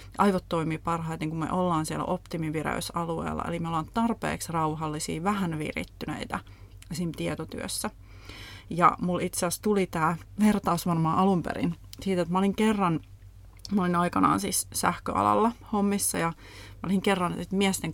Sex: female